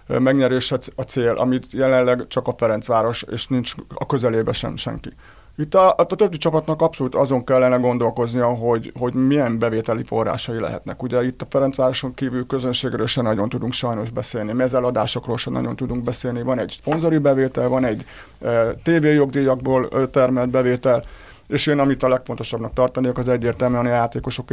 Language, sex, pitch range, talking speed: Hungarian, male, 120-135 Hz, 155 wpm